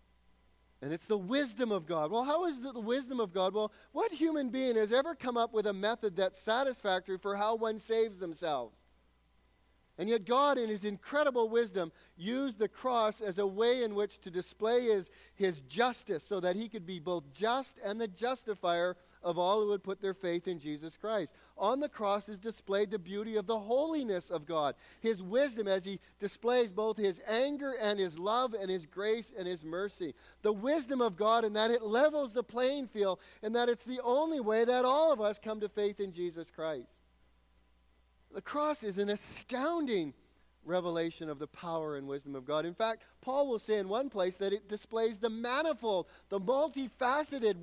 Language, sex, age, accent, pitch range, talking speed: English, male, 40-59, American, 180-240 Hz, 195 wpm